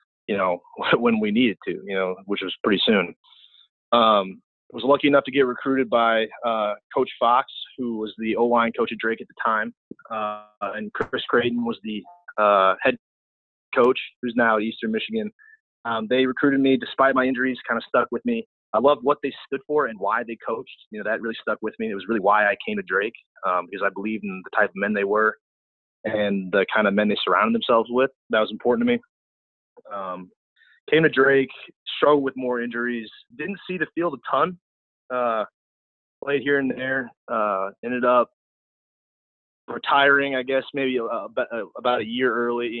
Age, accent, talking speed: 30-49, American, 195 wpm